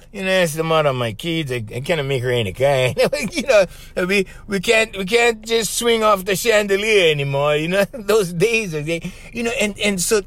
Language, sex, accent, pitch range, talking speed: English, male, American, 135-205 Hz, 230 wpm